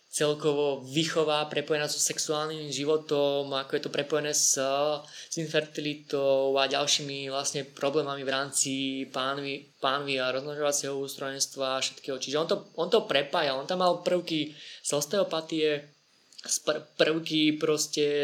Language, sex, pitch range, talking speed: Slovak, male, 140-155 Hz, 140 wpm